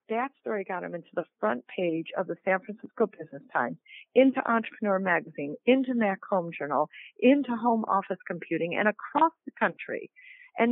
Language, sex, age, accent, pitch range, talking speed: English, female, 50-69, American, 185-250 Hz, 170 wpm